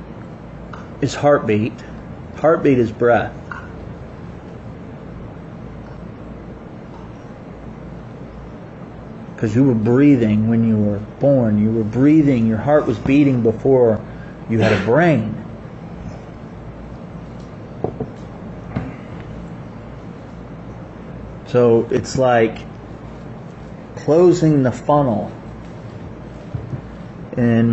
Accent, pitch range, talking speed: American, 110-140 Hz, 70 wpm